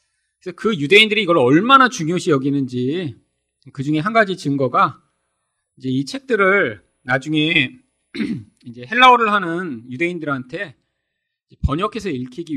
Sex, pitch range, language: male, 120-185 Hz, Korean